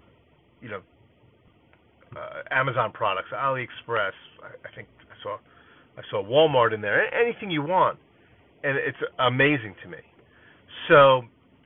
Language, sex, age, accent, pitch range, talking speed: English, male, 40-59, American, 115-145 Hz, 130 wpm